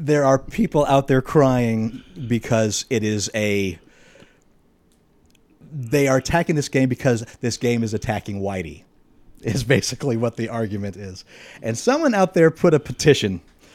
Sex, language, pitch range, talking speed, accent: male, English, 125-190 Hz, 150 wpm, American